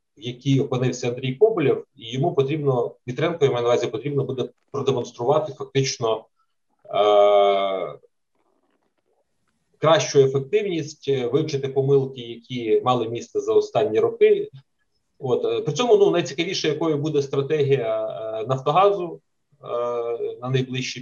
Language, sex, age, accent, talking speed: Ukrainian, male, 30-49, native, 115 wpm